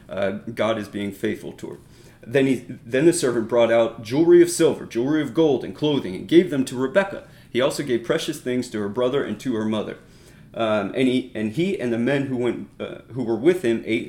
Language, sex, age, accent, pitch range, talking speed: English, male, 30-49, American, 110-165 Hz, 235 wpm